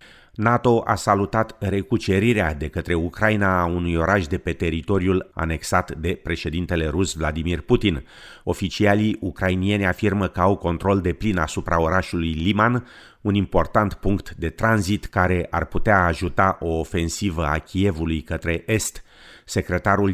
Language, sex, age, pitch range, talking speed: Romanian, male, 30-49, 85-100 Hz, 135 wpm